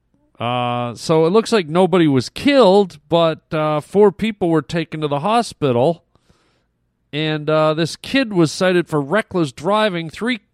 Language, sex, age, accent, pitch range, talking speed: English, male, 40-59, American, 140-205 Hz, 155 wpm